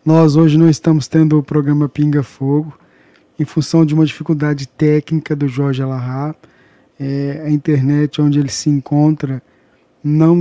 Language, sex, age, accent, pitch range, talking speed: Portuguese, male, 20-39, Brazilian, 140-160 Hz, 150 wpm